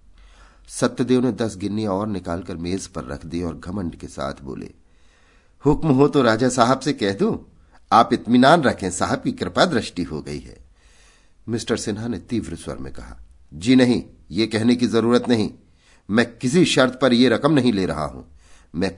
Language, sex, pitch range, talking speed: Hindi, male, 75-120 Hz, 185 wpm